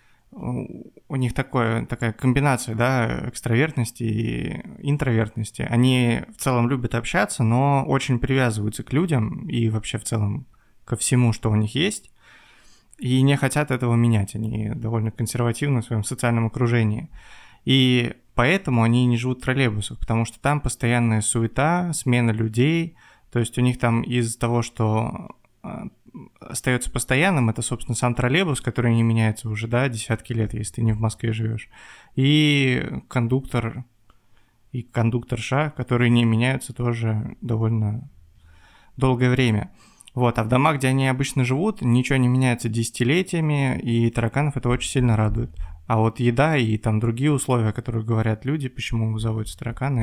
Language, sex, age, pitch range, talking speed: Russian, male, 20-39, 115-130 Hz, 145 wpm